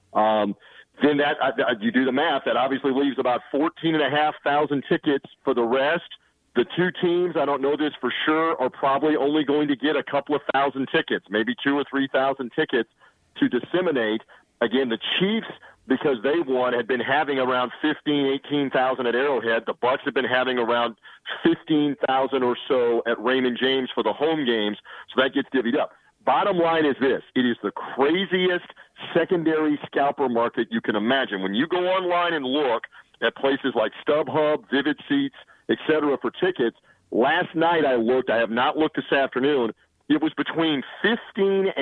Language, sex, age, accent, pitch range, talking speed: English, male, 40-59, American, 130-170 Hz, 185 wpm